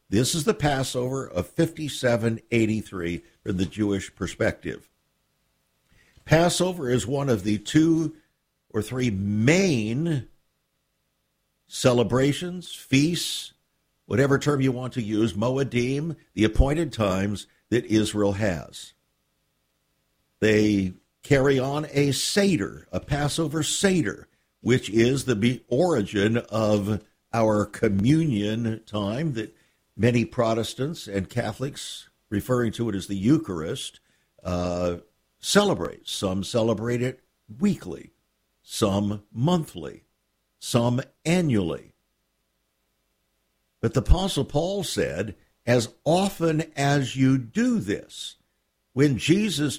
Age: 50-69